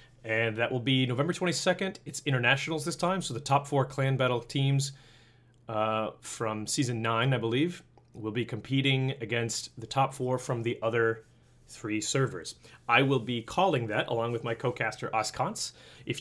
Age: 30-49